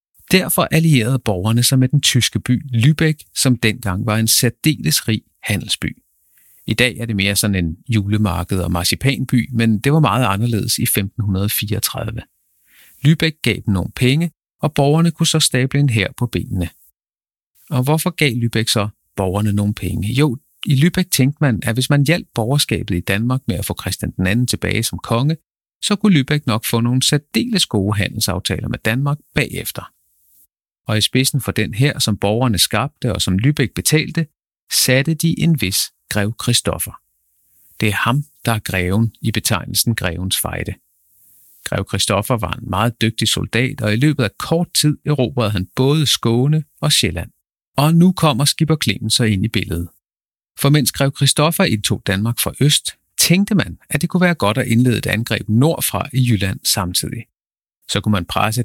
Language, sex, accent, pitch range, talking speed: Danish, male, native, 105-145 Hz, 175 wpm